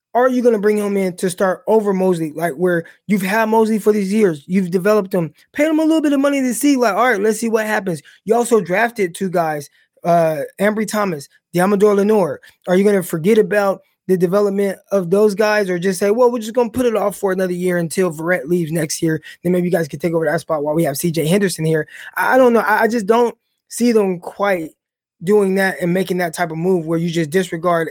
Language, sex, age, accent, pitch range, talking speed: English, male, 20-39, American, 175-215 Hz, 245 wpm